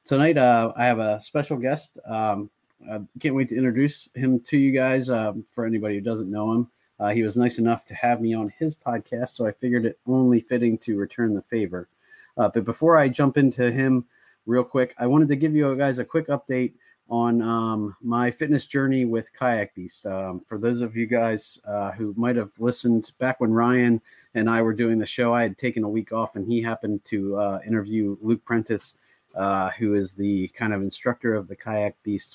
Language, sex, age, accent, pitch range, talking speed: English, male, 30-49, American, 100-120 Hz, 215 wpm